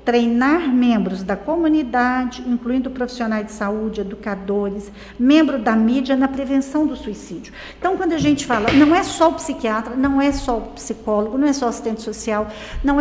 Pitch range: 220-290 Hz